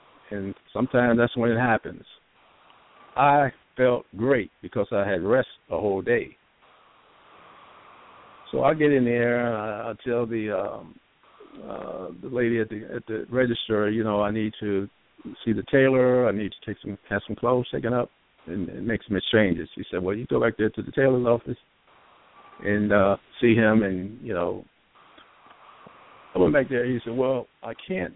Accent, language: American, English